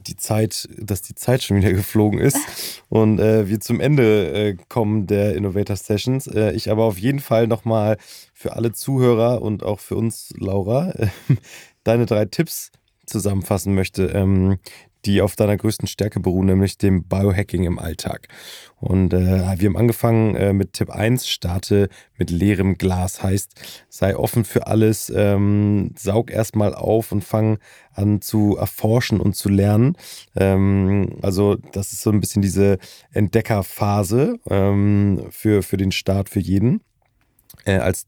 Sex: male